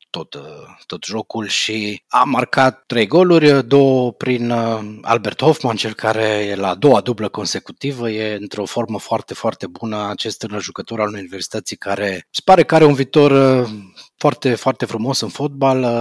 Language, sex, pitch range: Romanian, male, 110-145 Hz